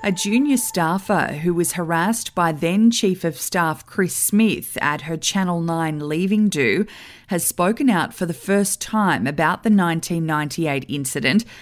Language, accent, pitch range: English, Australian, 165-205 Hz